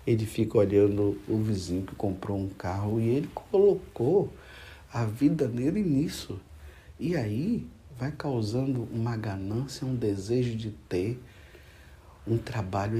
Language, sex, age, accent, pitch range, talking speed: Portuguese, male, 60-79, Brazilian, 90-115 Hz, 130 wpm